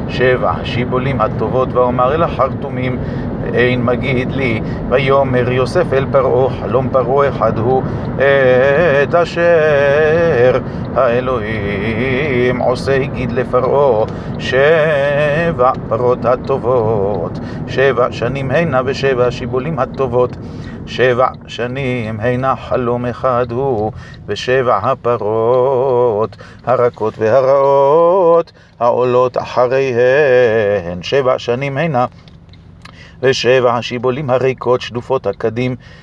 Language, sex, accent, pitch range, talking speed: Hebrew, male, native, 120-135 Hz, 85 wpm